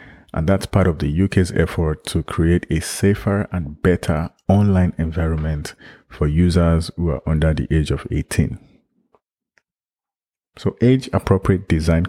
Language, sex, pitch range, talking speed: English, male, 80-95 Hz, 135 wpm